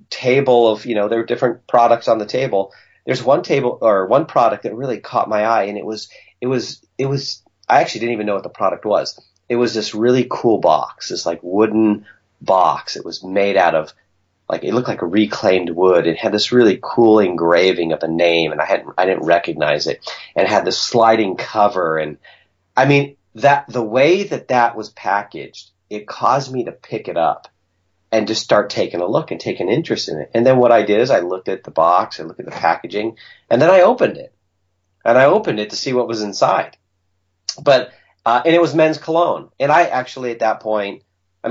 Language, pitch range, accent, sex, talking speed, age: English, 95-120 Hz, American, male, 225 wpm, 30-49